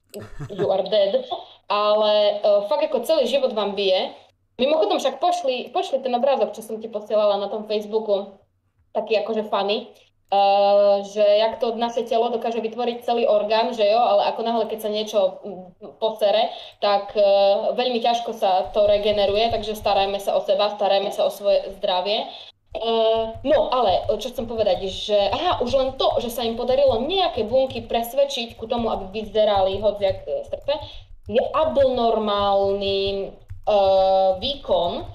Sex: female